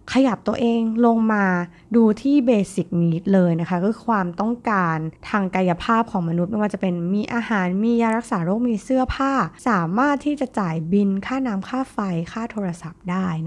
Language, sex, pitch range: Thai, female, 175-235 Hz